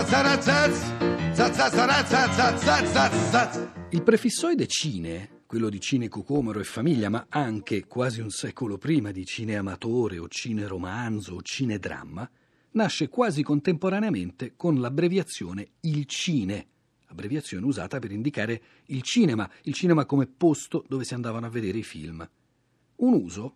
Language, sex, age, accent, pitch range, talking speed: Italian, male, 40-59, native, 105-155 Hz, 120 wpm